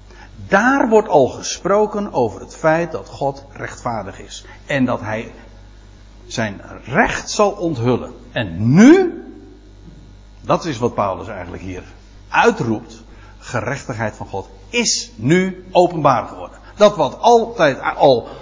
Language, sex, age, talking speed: Dutch, male, 60-79, 125 wpm